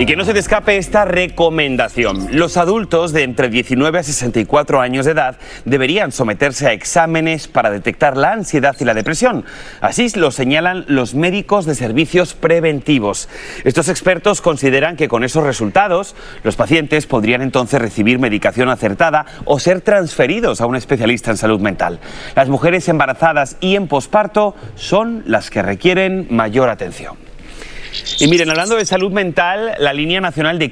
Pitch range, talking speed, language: 130-180 Hz, 160 wpm, Spanish